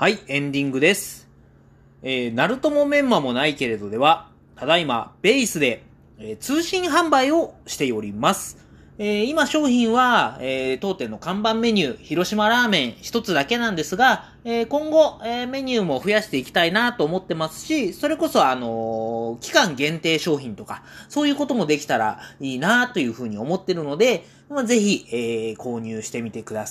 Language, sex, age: Japanese, male, 30-49